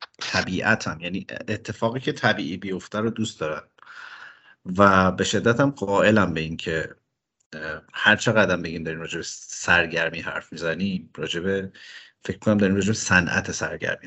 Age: 50-69